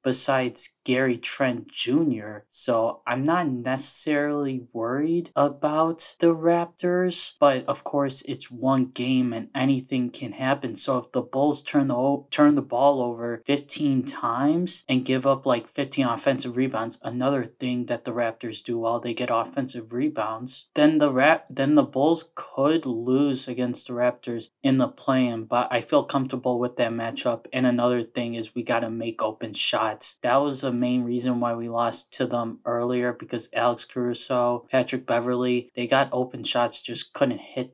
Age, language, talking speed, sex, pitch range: 20-39, English, 170 wpm, male, 120-135 Hz